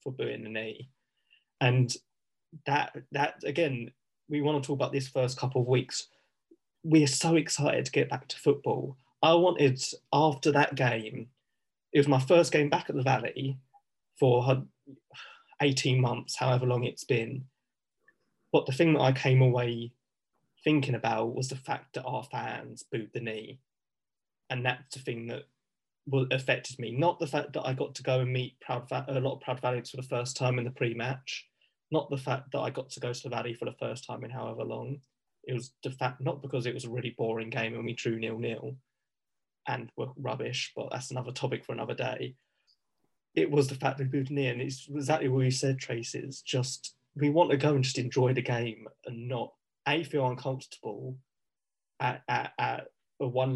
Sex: male